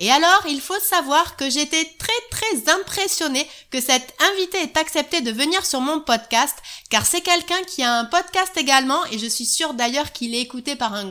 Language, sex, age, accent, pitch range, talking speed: French, female, 30-49, French, 255-330 Hz, 205 wpm